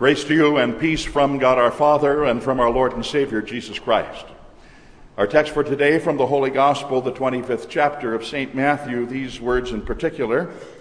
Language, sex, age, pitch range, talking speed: English, male, 60-79, 120-150 Hz, 195 wpm